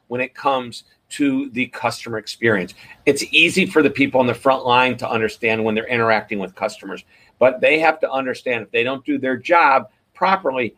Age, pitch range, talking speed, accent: 50-69, 125-160 Hz, 195 wpm, American